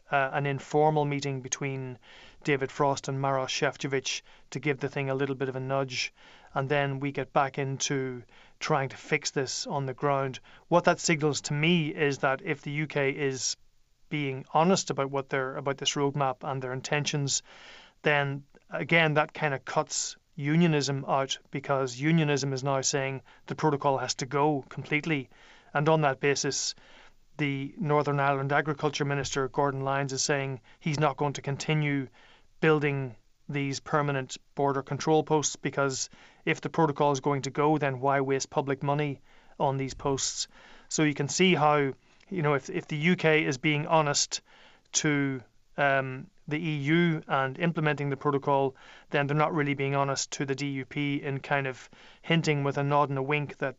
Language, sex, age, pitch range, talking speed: English, male, 30-49, 135-150 Hz, 170 wpm